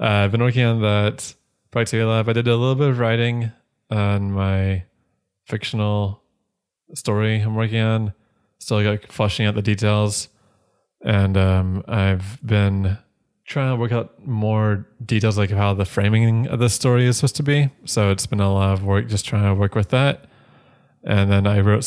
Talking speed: 180 wpm